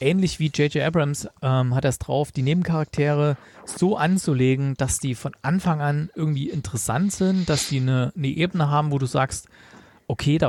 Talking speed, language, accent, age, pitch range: 185 wpm, German, German, 40-59, 115-150 Hz